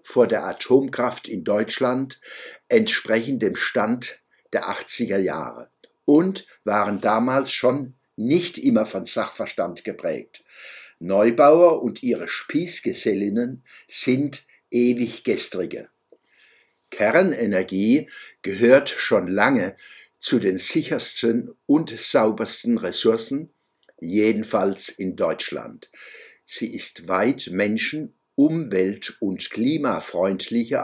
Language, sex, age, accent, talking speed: German, male, 60-79, German, 90 wpm